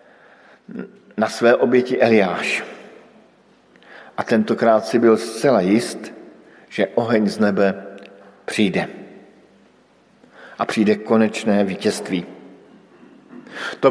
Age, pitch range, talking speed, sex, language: 50-69, 110-130 Hz, 85 wpm, male, Slovak